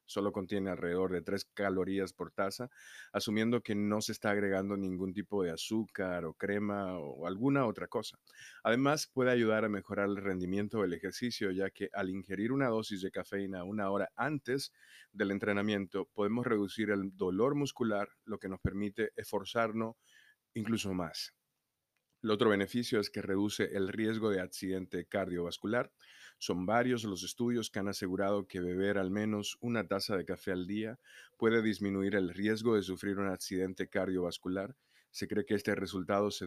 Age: 30-49